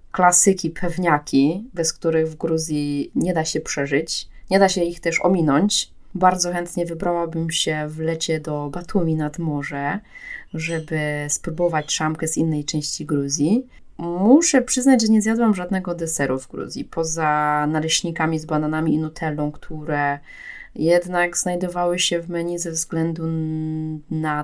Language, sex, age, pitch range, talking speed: Polish, female, 20-39, 155-185 Hz, 140 wpm